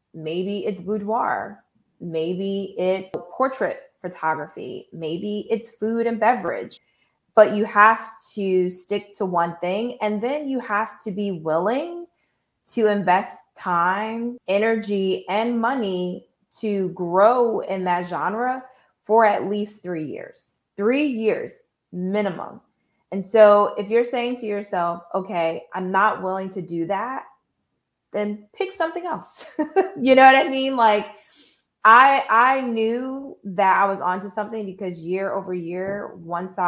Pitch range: 175-225 Hz